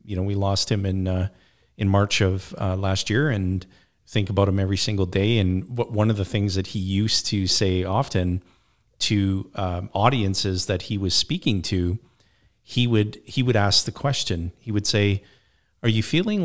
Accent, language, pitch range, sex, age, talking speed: American, English, 95-115 Hz, male, 40-59, 195 wpm